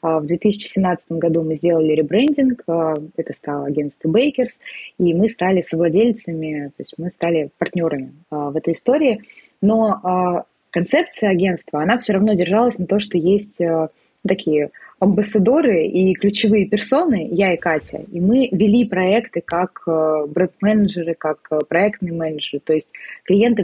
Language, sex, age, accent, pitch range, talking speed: Russian, female, 20-39, native, 170-220 Hz, 135 wpm